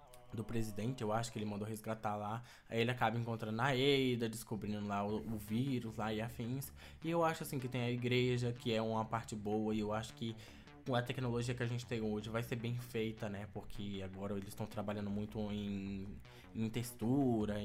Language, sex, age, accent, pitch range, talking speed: Portuguese, male, 20-39, Brazilian, 110-135 Hz, 205 wpm